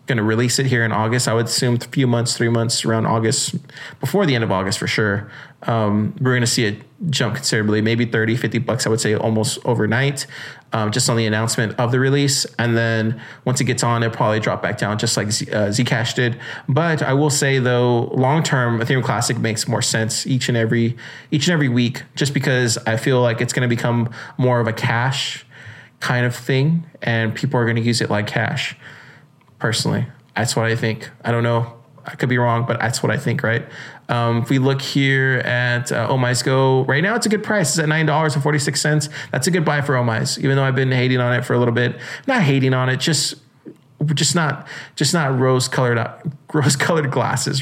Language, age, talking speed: English, 20-39, 225 wpm